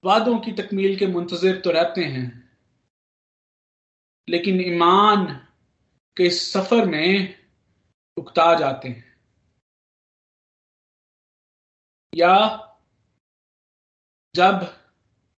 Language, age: Hindi, 40-59